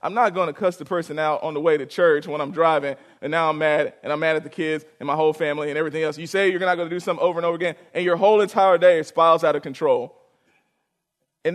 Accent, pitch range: American, 155-185 Hz